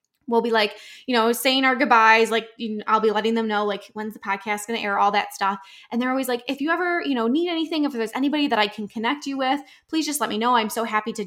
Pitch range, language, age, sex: 210-255 Hz, English, 10-29, female